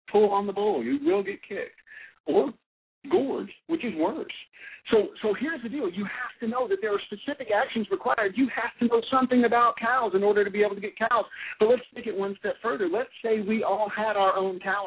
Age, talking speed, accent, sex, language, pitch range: 50-69, 235 wpm, American, male, English, 175-270 Hz